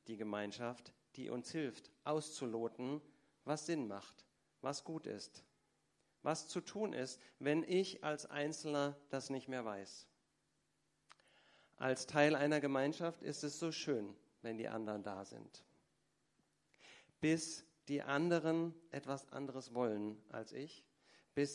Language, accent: German, German